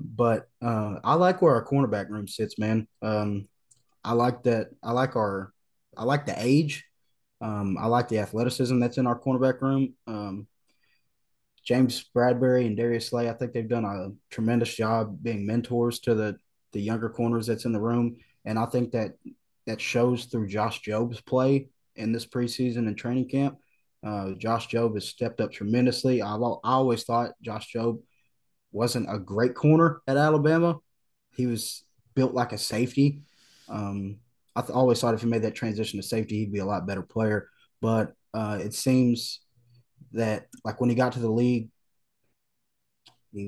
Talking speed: 175 wpm